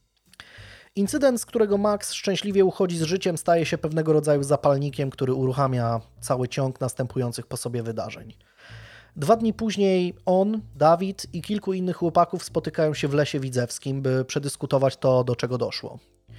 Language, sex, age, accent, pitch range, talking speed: Polish, male, 20-39, native, 130-170 Hz, 150 wpm